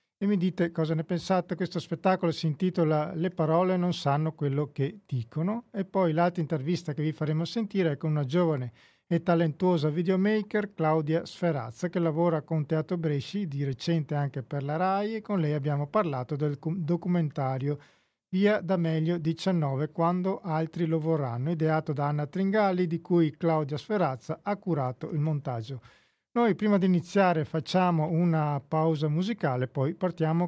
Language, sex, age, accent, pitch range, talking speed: Italian, male, 40-59, native, 155-185 Hz, 160 wpm